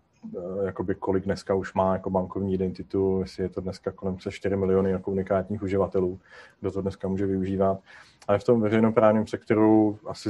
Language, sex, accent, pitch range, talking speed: English, male, Czech, 95-100 Hz, 175 wpm